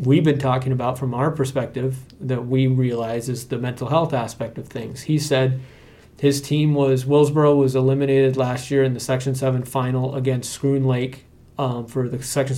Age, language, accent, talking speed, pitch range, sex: 30-49, English, American, 185 wpm, 125-140 Hz, male